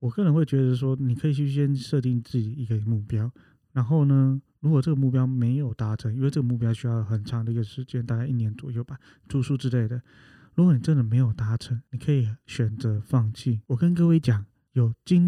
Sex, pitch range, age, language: male, 115-145 Hz, 20-39, Chinese